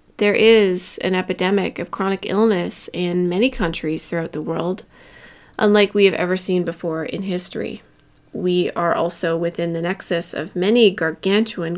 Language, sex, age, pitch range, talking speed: English, female, 30-49, 170-205 Hz, 155 wpm